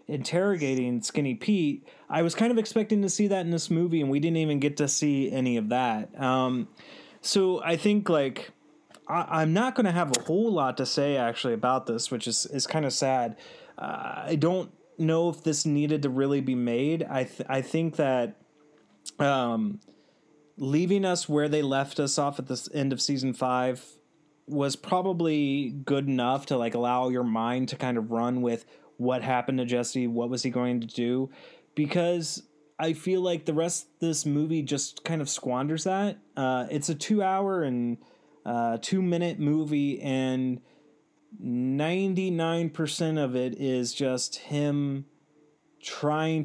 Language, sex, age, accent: English, male, 30-49, American